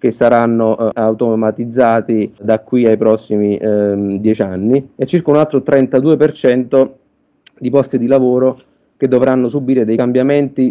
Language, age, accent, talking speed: Italian, 30-49, native, 140 wpm